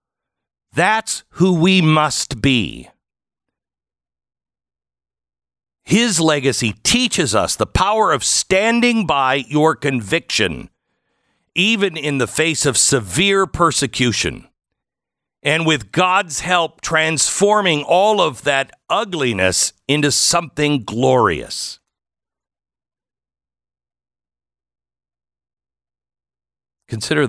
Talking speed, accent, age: 80 wpm, American, 50-69